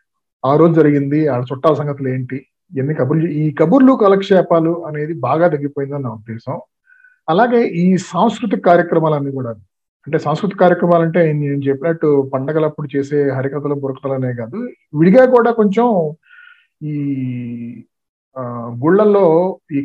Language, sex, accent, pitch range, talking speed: Telugu, male, native, 135-190 Hz, 120 wpm